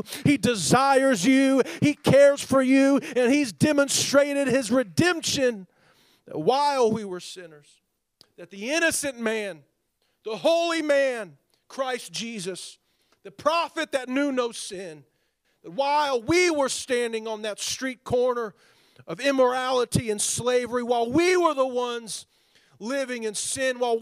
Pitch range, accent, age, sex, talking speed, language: 170-245 Hz, American, 40-59, male, 130 wpm, English